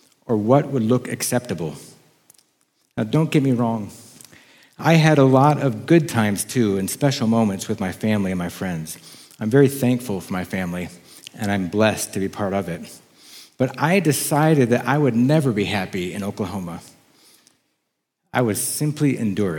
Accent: American